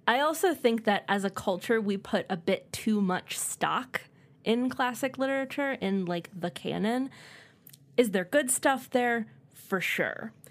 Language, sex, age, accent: English, female, 20-39, American